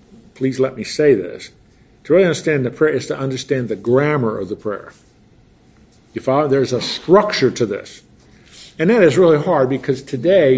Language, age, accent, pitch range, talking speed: English, 50-69, American, 120-165 Hz, 180 wpm